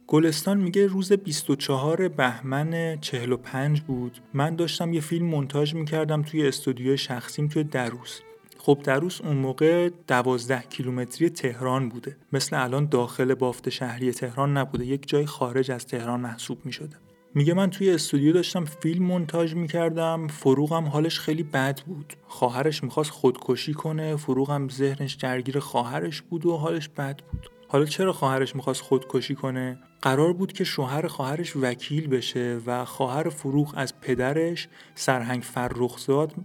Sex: male